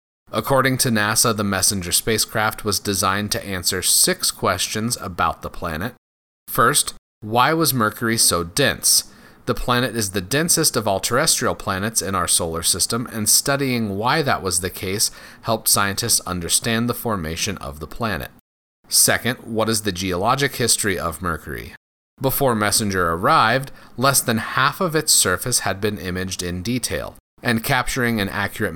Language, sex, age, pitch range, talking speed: English, male, 30-49, 95-125 Hz, 155 wpm